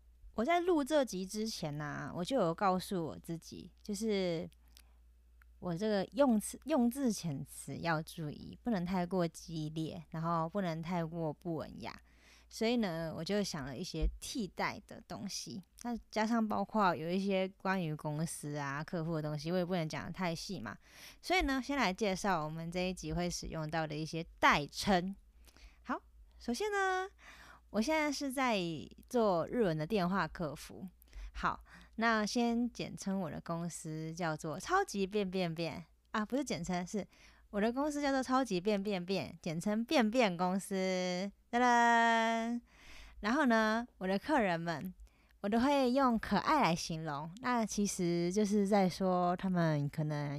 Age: 20-39